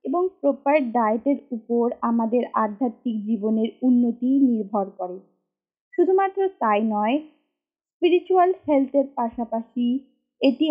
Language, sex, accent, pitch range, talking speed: Bengali, female, native, 225-285 Hz, 95 wpm